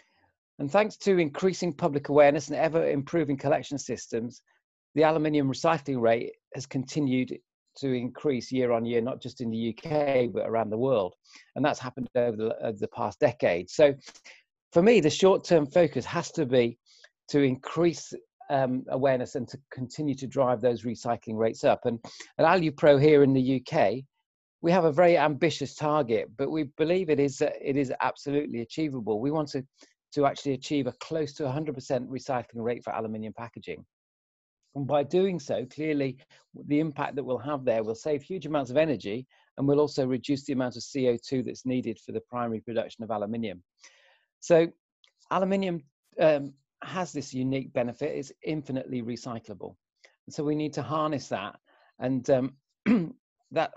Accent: British